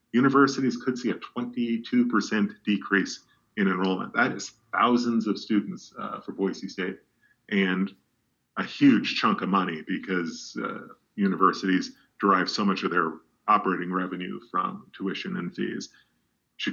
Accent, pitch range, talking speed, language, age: American, 100-120 Hz, 135 wpm, English, 40-59